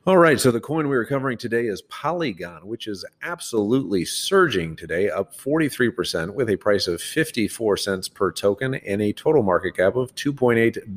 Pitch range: 85-110 Hz